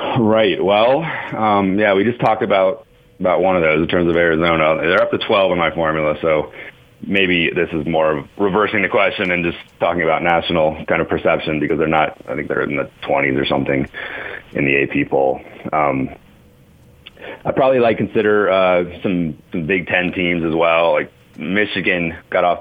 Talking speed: 190 wpm